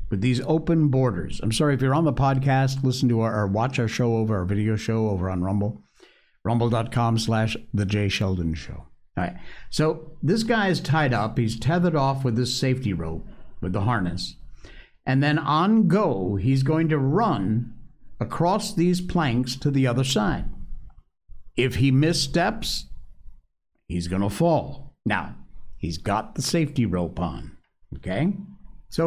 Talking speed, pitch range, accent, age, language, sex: 165 wpm, 85-135 Hz, American, 60-79, English, male